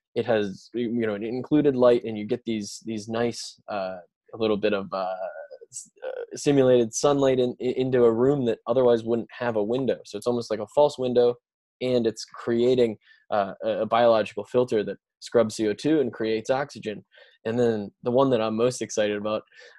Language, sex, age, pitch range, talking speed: English, male, 10-29, 110-125 Hz, 180 wpm